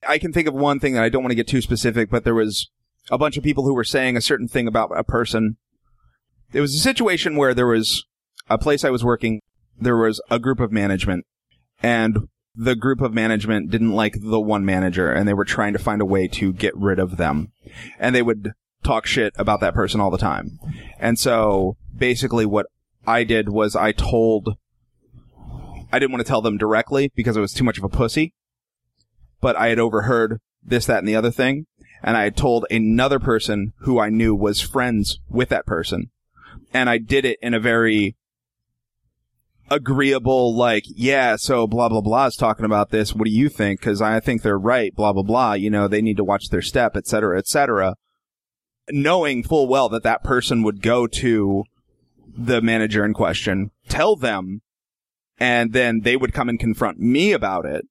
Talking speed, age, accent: 205 wpm, 30-49, American